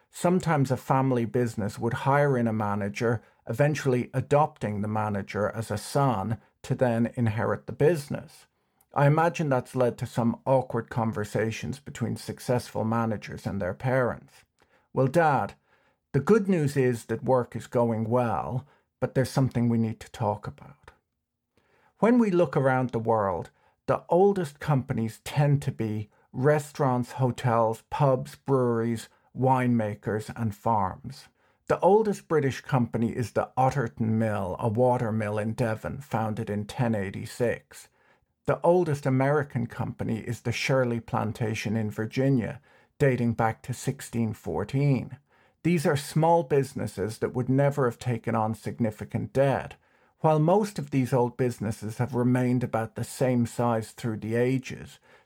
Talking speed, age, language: 140 wpm, 50-69, English